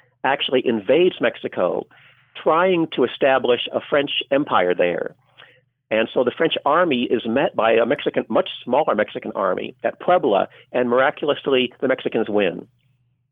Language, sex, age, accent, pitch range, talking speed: English, male, 50-69, American, 120-145 Hz, 145 wpm